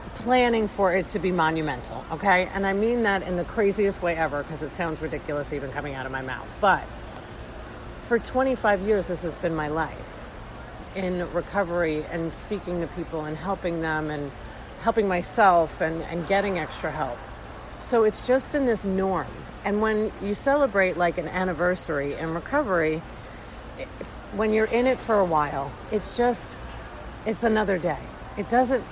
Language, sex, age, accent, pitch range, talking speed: English, female, 40-59, American, 160-210 Hz, 170 wpm